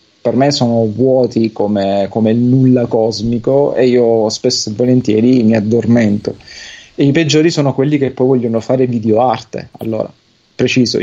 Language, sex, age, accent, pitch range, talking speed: Italian, male, 30-49, native, 110-135 Hz, 145 wpm